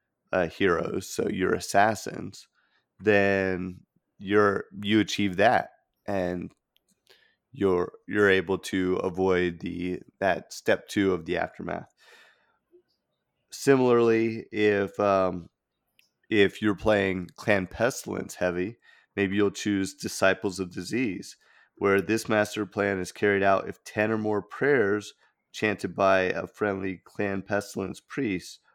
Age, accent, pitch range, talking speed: 30-49, American, 95-105 Hz, 120 wpm